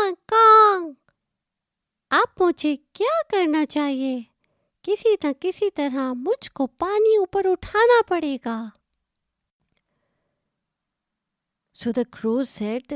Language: Urdu